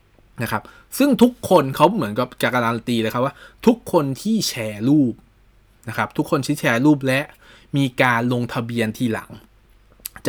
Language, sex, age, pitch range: Thai, male, 20-39, 110-135 Hz